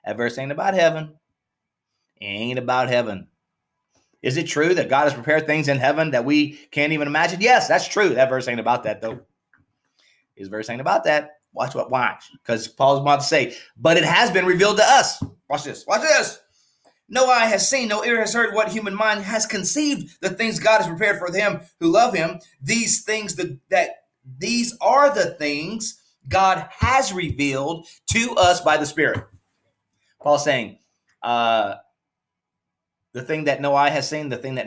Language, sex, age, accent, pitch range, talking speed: English, male, 30-49, American, 120-180 Hz, 185 wpm